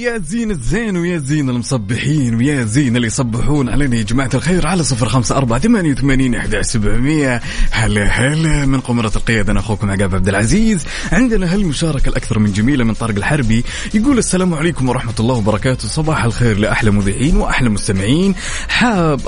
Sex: male